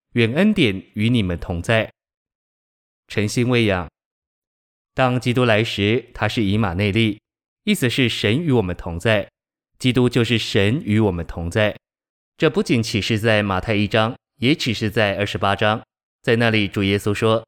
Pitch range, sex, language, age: 100-120 Hz, male, Chinese, 20-39